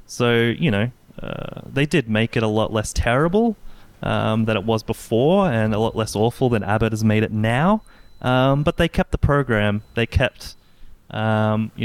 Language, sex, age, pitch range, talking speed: English, male, 20-39, 105-115 Hz, 190 wpm